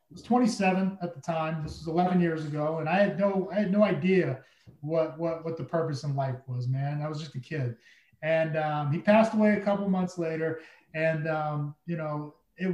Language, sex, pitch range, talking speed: English, male, 155-195 Hz, 220 wpm